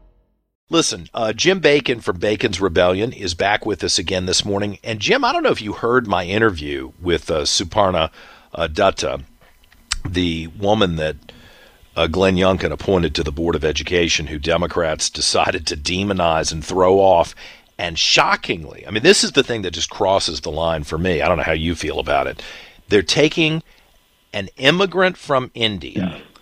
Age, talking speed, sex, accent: 50-69, 175 wpm, male, American